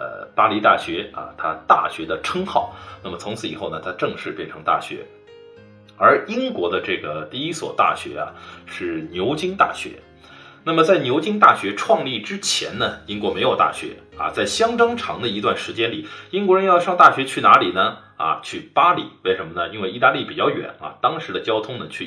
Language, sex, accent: Chinese, male, native